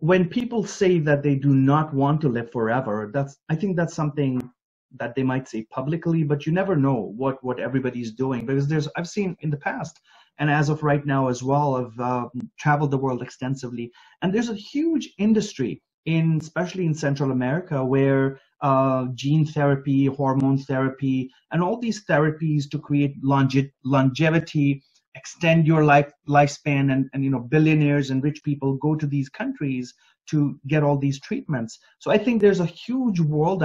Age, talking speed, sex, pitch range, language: 30-49, 180 wpm, male, 130-155 Hz, English